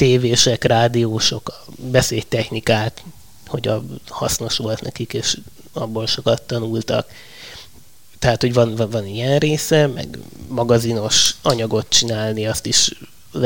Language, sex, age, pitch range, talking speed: Hungarian, male, 20-39, 115-130 Hz, 110 wpm